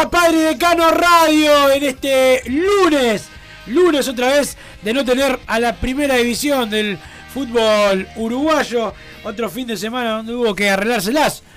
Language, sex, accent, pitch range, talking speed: Spanish, male, Argentinian, 175-235 Hz, 145 wpm